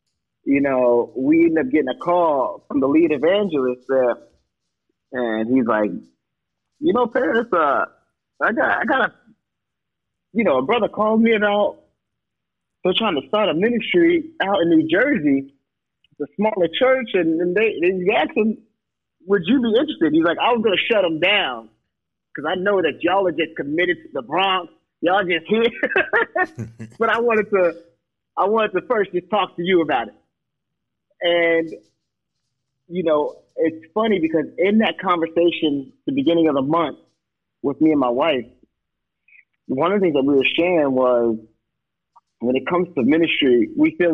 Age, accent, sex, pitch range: 30-49, American, male, 140-210 Hz